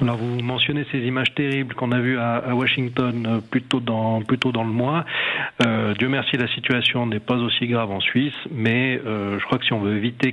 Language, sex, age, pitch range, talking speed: French, male, 40-59, 110-125 Hz, 215 wpm